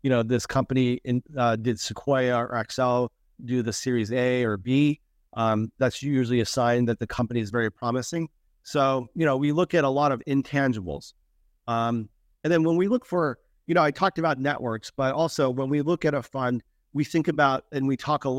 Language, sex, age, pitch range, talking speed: English, male, 40-59, 120-145 Hz, 210 wpm